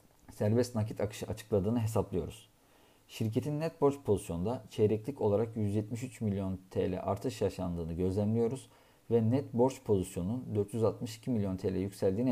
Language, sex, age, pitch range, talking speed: Turkish, male, 50-69, 100-120 Hz, 120 wpm